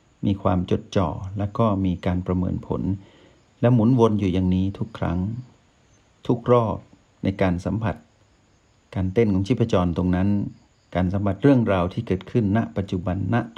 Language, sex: Thai, male